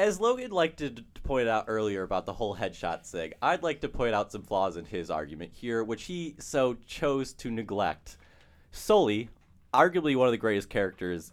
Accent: American